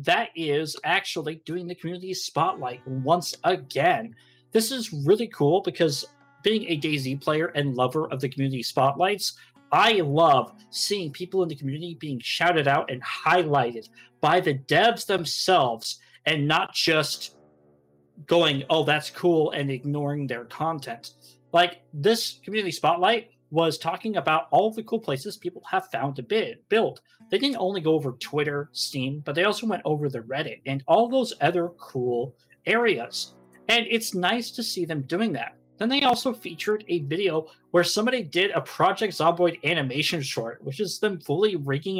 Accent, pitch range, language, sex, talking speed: American, 140-200 Hz, English, male, 165 wpm